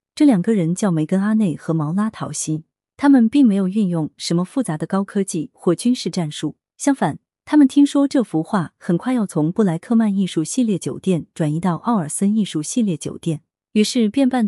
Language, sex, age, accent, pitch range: Chinese, female, 20-39, native, 160-225 Hz